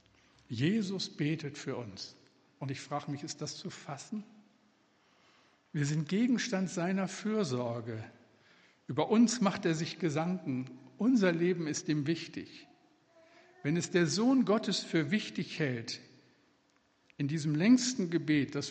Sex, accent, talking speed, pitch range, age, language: male, German, 130 wpm, 140-190 Hz, 60-79, German